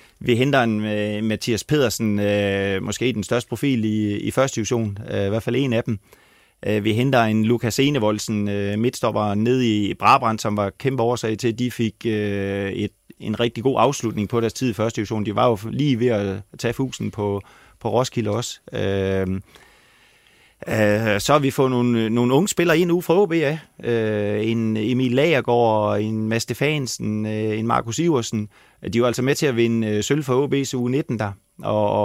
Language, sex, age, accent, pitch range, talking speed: Danish, male, 30-49, native, 105-130 Hz, 190 wpm